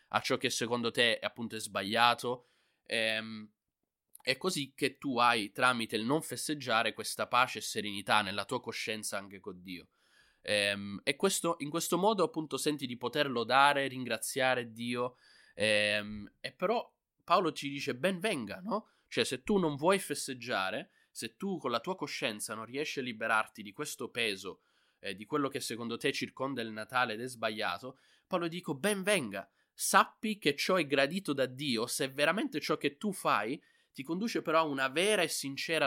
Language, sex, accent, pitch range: Italian, male, native, 115-150 Hz